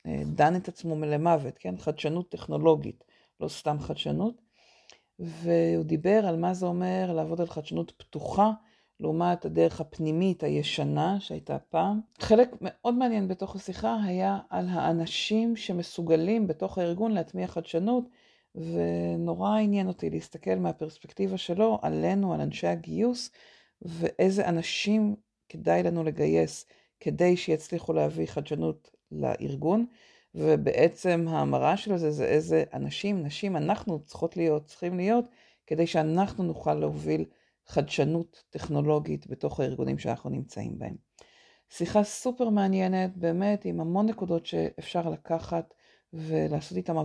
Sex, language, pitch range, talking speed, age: female, Hebrew, 155-190 Hz, 120 wpm, 40-59